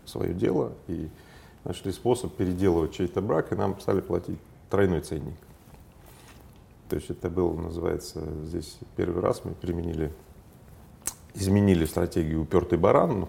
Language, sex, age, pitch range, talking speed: Russian, male, 40-59, 85-100 Hz, 130 wpm